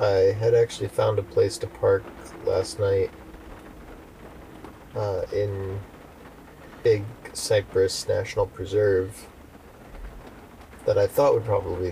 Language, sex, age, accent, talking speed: English, male, 30-49, American, 105 wpm